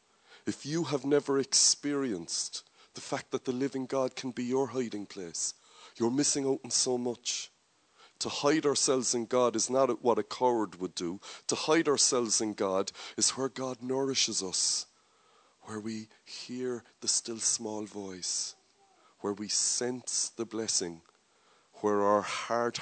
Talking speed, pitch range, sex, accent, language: 155 wpm, 105-130 Hz, male, Irish, English